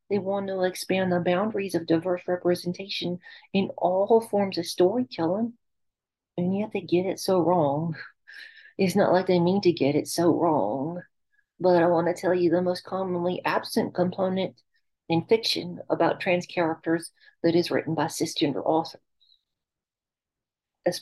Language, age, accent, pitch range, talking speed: English, 40-59, American, 175-210 Hz, 155 wpm